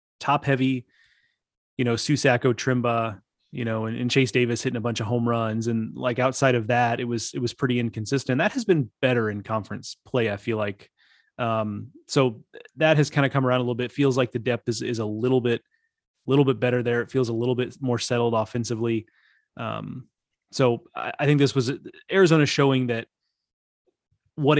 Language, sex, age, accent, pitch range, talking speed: English, male, 30-49, American, 115-140 Hz, 200 wpm